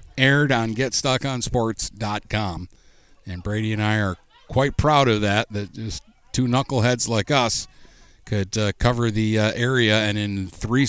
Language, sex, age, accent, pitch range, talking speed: English, male, 60-79, American, 100-125 Hz, 150 wpm